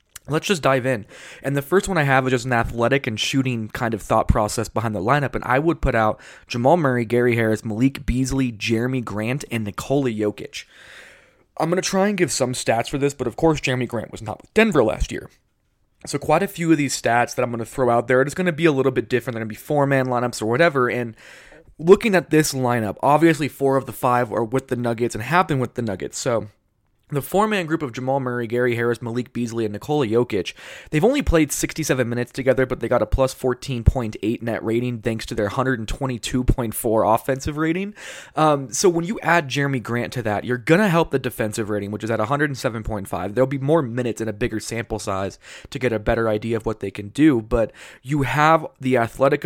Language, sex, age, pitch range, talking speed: English, male, 20-39, 115-140 Hz, 230 wpm